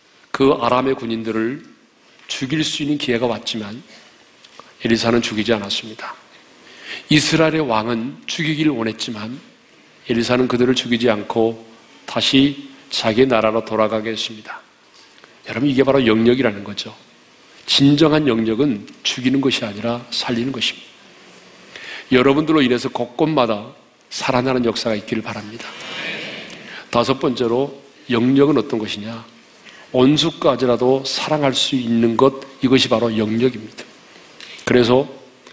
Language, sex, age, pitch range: Korean, male, 40-59, 115-140 Hz